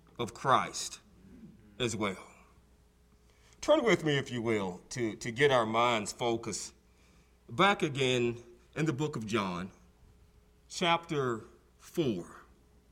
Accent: American